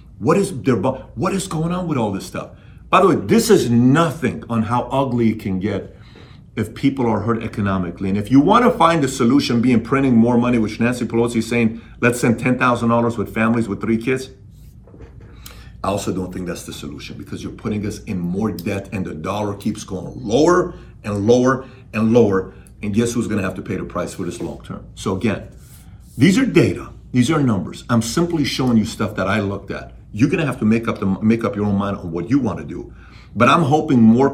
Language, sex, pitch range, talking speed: English, male, 110-160 Hz, 230 wpm